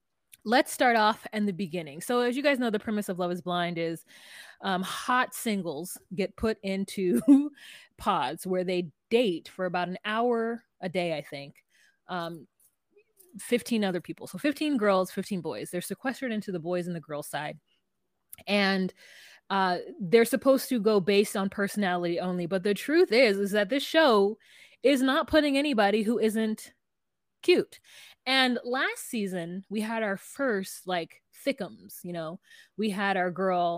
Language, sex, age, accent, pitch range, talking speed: English, female, 20-39, American, 180-235 Hz, 165 wpm